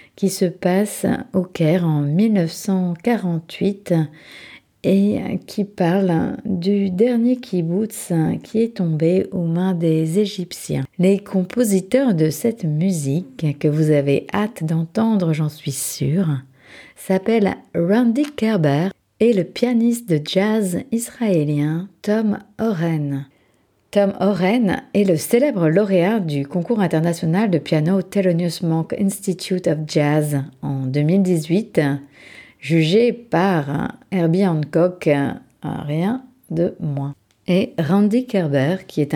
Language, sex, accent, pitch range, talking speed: French, female, French, 155-200 Hz, 115 wpm